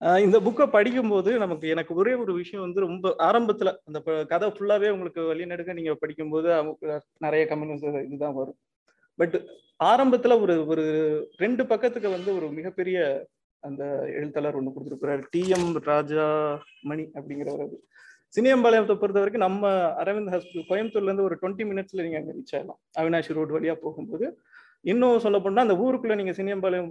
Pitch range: 155-210 Hz